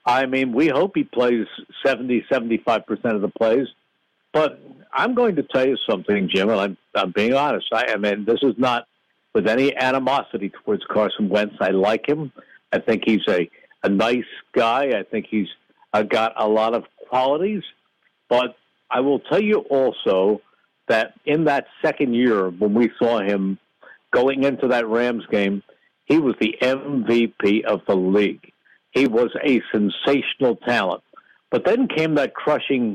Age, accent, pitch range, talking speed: 60-79, American, 115-145 Hz, 165 wpm